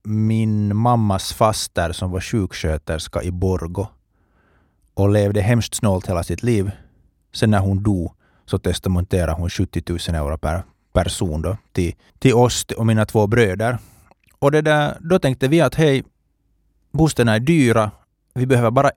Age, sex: 30-49, male